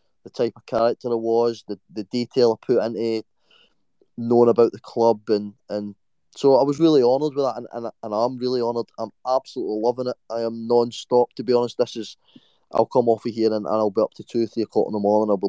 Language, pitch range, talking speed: English, 115-125 Hz, 250 wpm